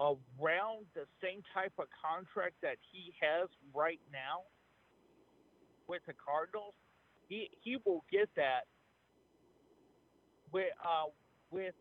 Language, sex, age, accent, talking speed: English, male, 50-69, American, 110 wpm